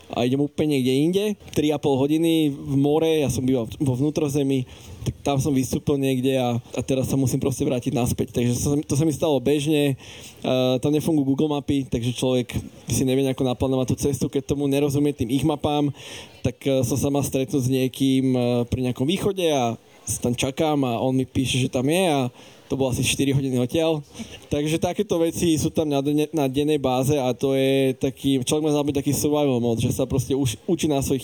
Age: 20-39